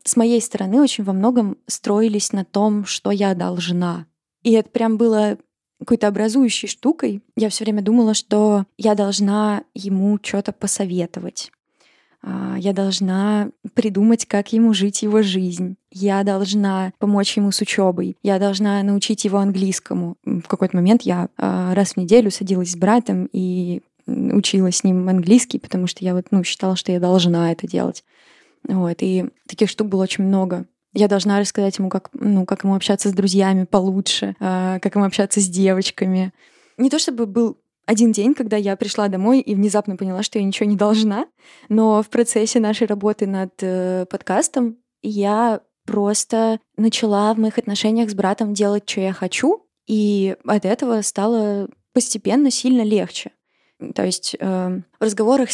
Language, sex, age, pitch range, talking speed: Russian, female, 20-39, 195-225 Hz, 155 wpm